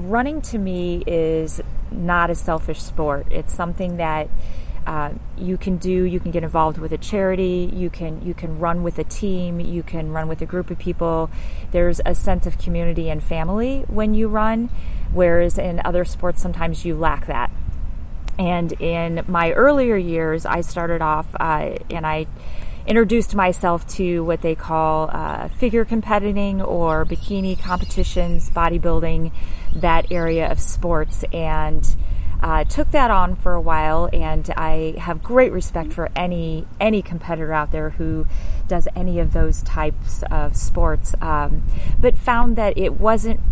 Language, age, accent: English, 30-49, American